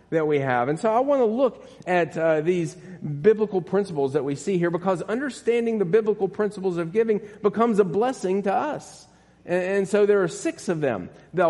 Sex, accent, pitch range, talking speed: male, American, 155-210 Hz, 205 wpm